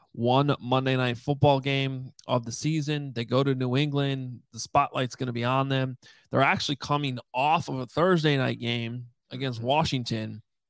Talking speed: 175 wpm